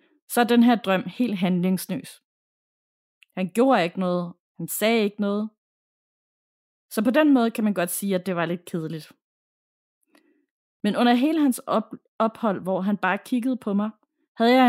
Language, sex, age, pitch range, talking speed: Danish, female, 30-49, 185-240 Hz, 170 wpm